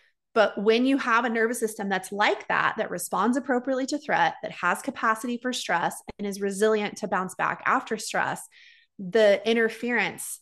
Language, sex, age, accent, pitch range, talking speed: English, female, 20-39, American, 195-230 Hz, 175 wpm